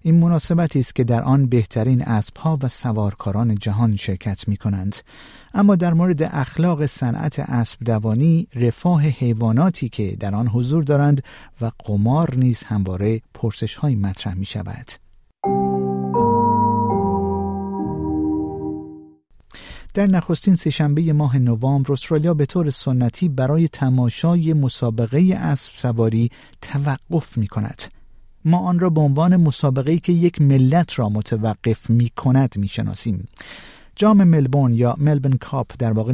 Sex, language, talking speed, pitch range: male, Persian, 120 wpm, 110-150 Hz